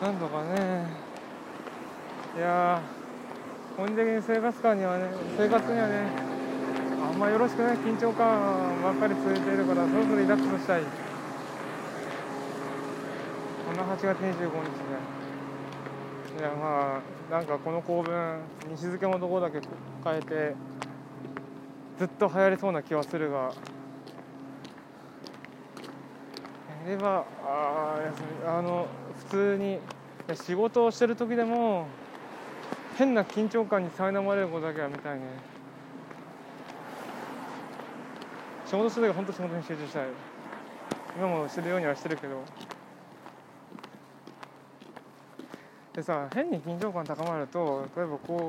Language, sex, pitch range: Japanese, male, 155-200 Hz